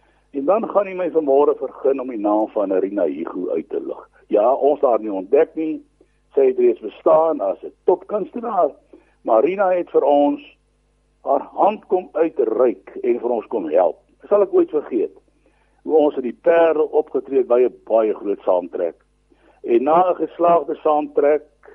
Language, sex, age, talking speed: English, male, 60-79, 180 wpm